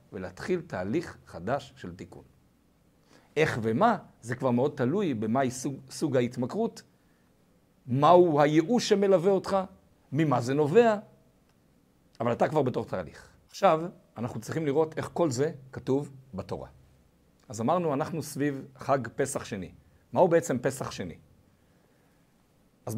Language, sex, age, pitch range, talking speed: Hebrew, male, 50-69, 105-165 Hz, 130 wpm